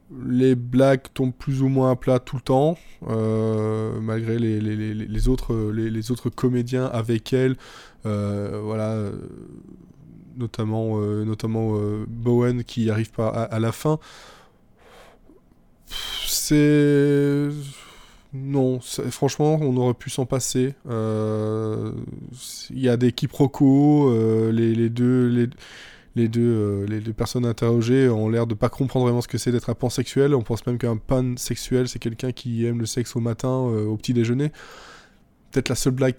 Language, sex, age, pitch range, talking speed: French, male, 20-39, 115-140 Hz, 165 wpm